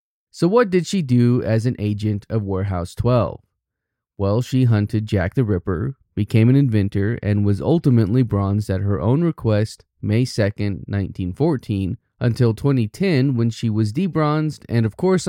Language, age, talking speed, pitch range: English, 20-39, 155 wpm, 100-125 Hz